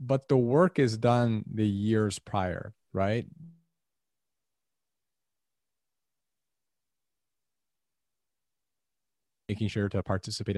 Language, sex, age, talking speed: English, male, 30-49, 75 wpm